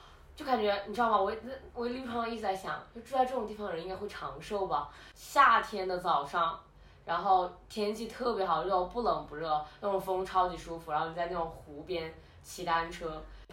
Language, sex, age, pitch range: Chinese, female, 20-39, 165-205 Hz